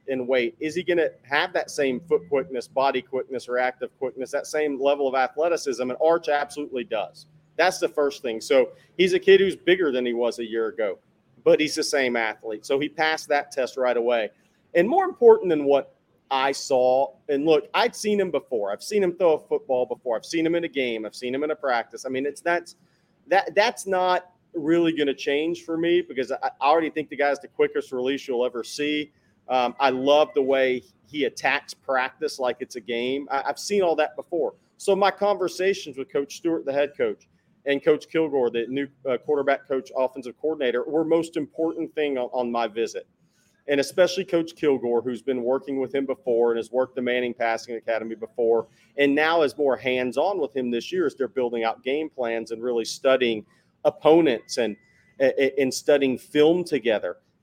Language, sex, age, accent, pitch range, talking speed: English, male, 40-59, American, 130-170 Hz, 205 wpm